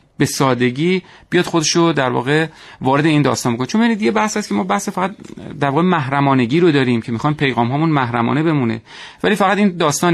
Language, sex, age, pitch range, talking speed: Persian, male, 30-49, 130-175 Hz, 200 wpm